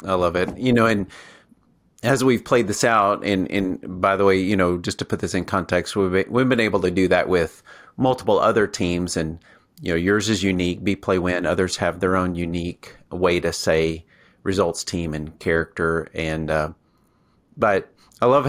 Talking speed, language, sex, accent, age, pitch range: 195 wpm, English, male, American, 40-59, 85-100 Hz